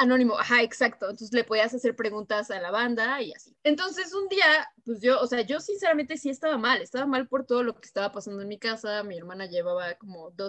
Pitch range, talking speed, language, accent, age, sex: 205-265 Hz, 235 wpm, Spanish, Mexican, 20-39, female